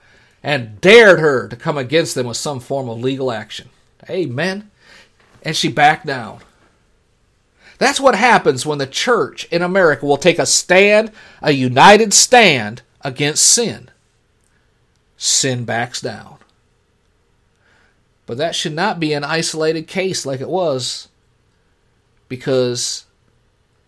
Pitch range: 125-210 Hz